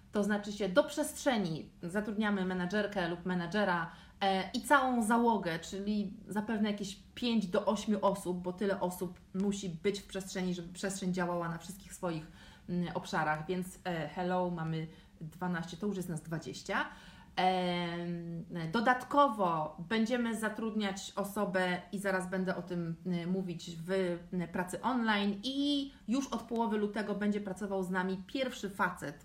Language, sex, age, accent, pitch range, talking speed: Polish, female, 30-49, native, 180-215 Hz, 135 wpm